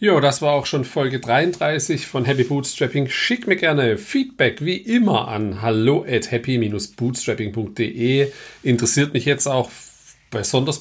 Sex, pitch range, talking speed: male, 105-135 Hz, 140 wpm